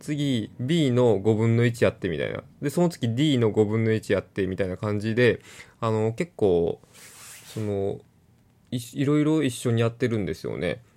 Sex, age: male, 20-39